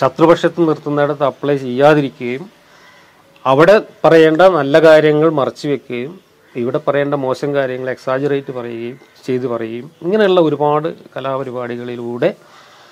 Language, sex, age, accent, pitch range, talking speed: Malayalam, male, 40-59, native, 120-155 Hz, 95 wpm